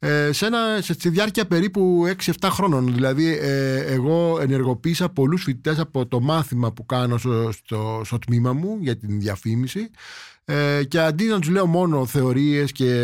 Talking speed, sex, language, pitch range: 155 wpm, male, Greek, 125-170 Hz